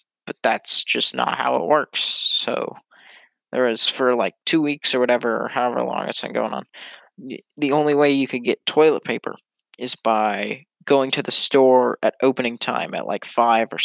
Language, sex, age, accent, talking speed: English, male, 20-39, American, 190 wpm